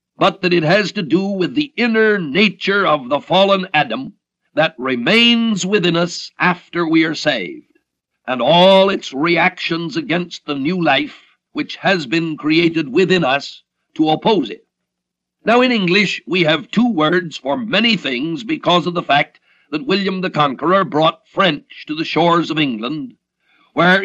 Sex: male